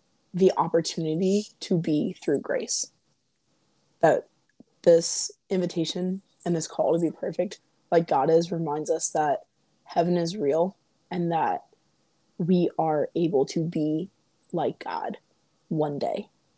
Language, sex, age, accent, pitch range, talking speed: English, female, 20-39, American, 160-180 Hz, 125 wpm